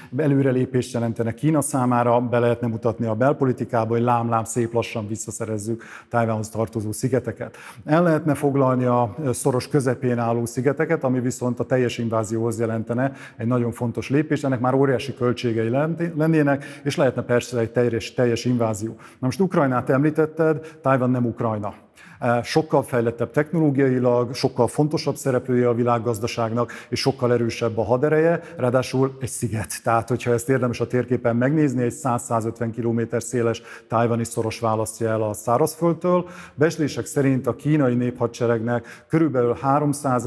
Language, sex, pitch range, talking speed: Hungarian, male, 115-135 Hz, 140 wpm